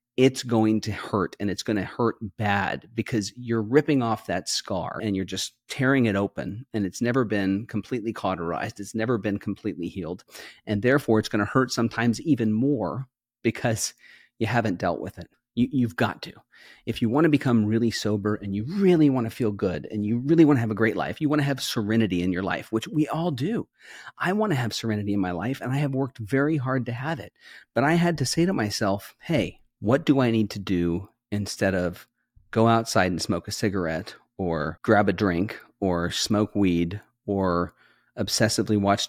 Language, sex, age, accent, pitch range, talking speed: English, male, 40-59, American, 100-130 Hz, 195 wpm